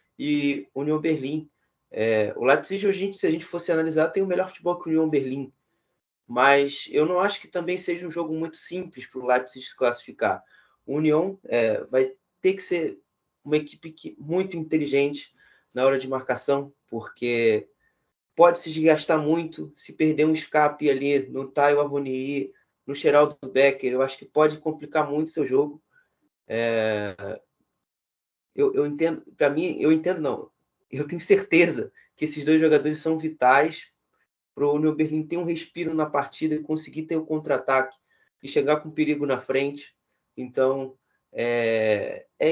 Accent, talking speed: Brazilian, 170 wpm